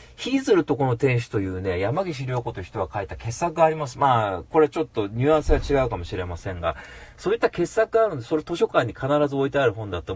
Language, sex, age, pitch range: Japanese, male, 40-59, 105-155 Hz